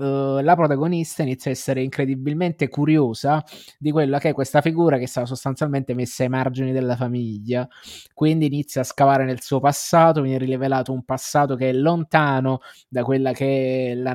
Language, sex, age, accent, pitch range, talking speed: Italian, male, 20-39, native, 125-140 Hz, 175 wpm